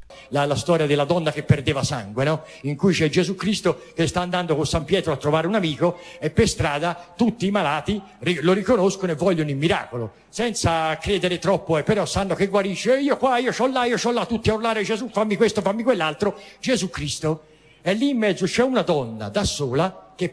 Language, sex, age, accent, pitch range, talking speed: Italian, male, 50-69, native, 165-215 Hz, 215 wpm